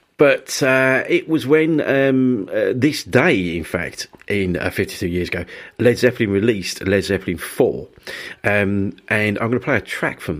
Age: 50-69